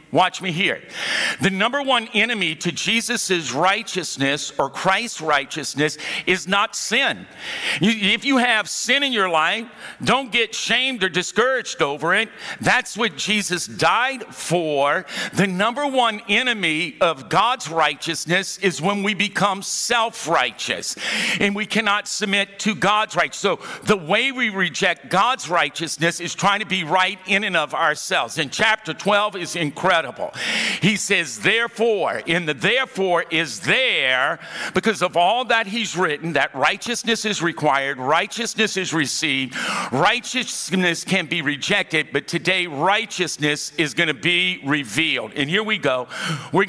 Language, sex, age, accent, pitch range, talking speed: English, male, 50-69, American, 160-215 Hz, 145 wpm